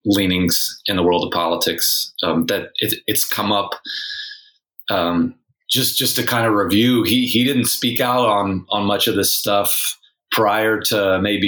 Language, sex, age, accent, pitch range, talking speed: English, male, 30-49, American, 95-115 Hz, 165 wpm